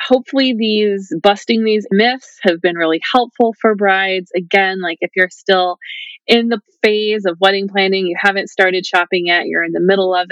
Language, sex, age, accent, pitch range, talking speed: English, female, 30-49, American, 185-235 Hz, 185 wpm